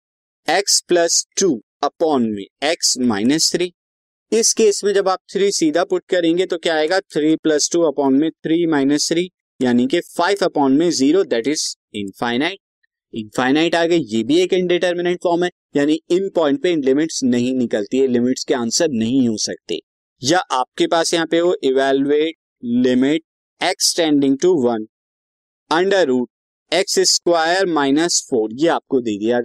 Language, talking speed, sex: Hindi, 155 wpm, male